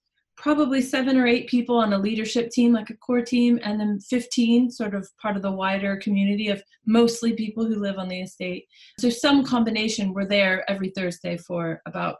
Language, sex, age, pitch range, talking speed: English, female, 20-39, 195-235 Hz, 195 wpm